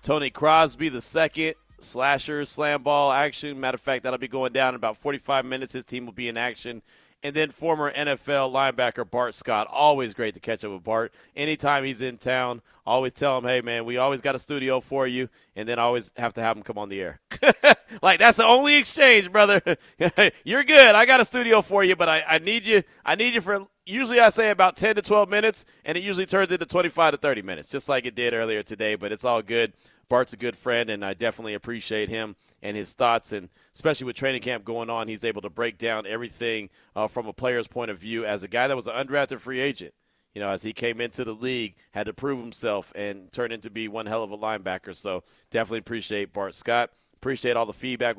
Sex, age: male, 30-49